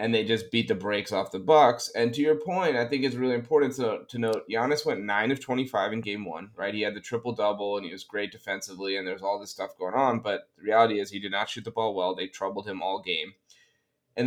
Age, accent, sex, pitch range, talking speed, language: 20-39, American, male, 100-115 Hz, 265 wpm, English